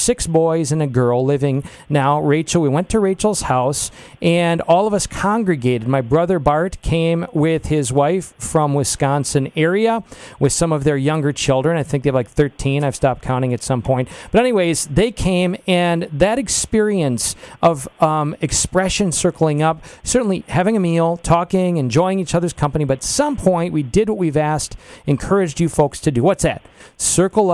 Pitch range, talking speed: 145-175 Hz, 185 wpm